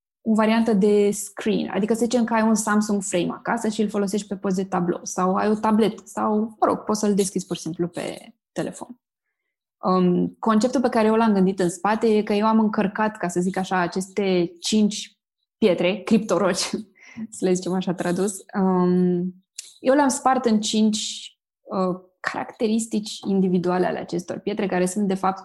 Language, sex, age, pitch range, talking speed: Romanian, female, 20-39, 185-215 Hz, 185 wpm